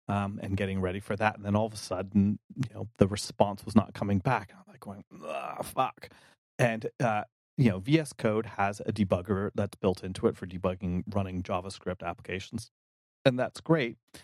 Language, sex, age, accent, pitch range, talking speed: English, male, 30-49, American, 95-110 Hz, 190 wpm